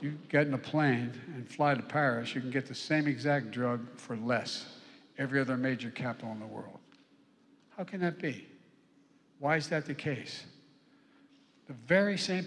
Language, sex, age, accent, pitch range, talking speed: English, male, 60-79, American, 130-175 Hz, 180 wpm